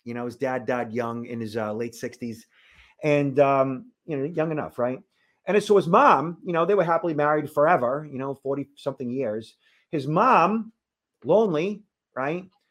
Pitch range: 145-200 Hz